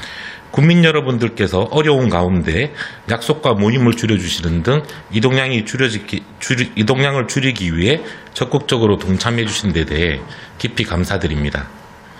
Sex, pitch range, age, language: male, 95-140 Hz, 40-59, Korean